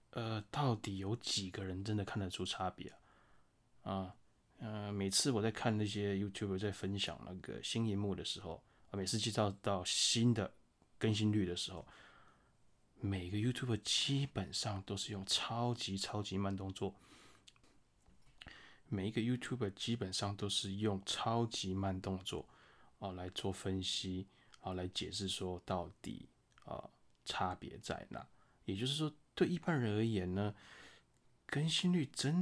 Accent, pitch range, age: native, 95-110 Hz, 20-39